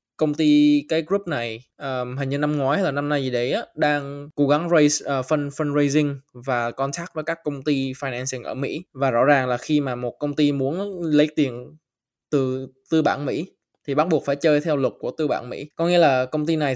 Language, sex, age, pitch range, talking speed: Vietnamese, male, 10-29, 135-160 Hz, 235 wpm